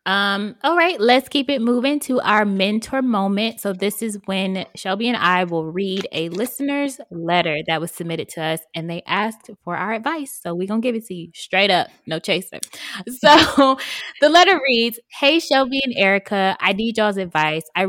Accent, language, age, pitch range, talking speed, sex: American, English, 20-39, 170-220 Hz, 200 wpm, female